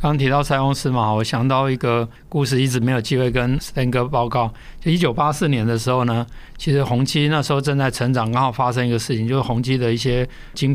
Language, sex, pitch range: Chinese, male, 120-145 Hz